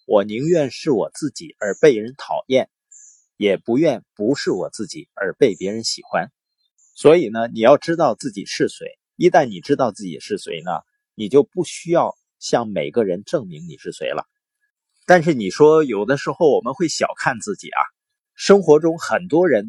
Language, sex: Chinese, male